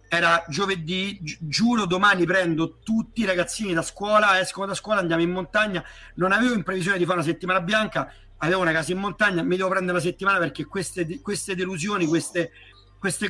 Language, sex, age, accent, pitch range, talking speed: Italian, male, 40-59, native, 165-205 Hz, 185 wpm